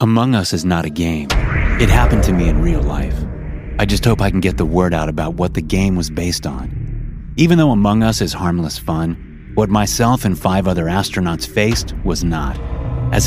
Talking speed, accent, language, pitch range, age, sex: 210 wpm, American, English, 85-115 Hz, 30-49, male